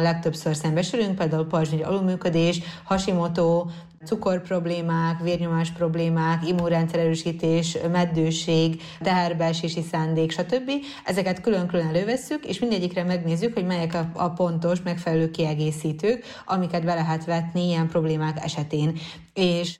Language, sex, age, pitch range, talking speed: Hungarian, female, 20-39, 165-180 Hz, 105 wpm